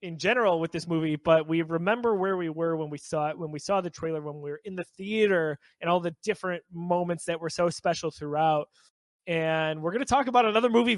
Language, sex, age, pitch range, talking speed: English, male, 20-39, 170-225 Hz, 240 wpm